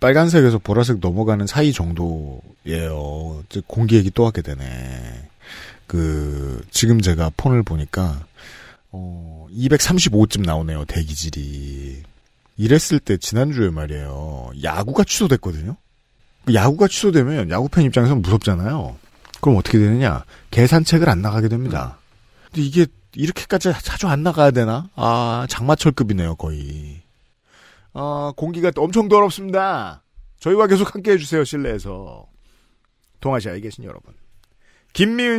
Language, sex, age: Korean, male, 40-59